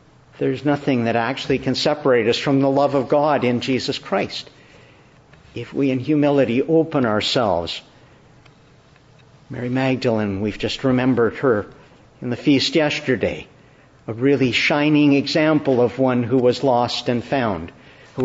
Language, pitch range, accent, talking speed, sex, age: English, 130-150 Hz, American, 140 wpm, male, 50-69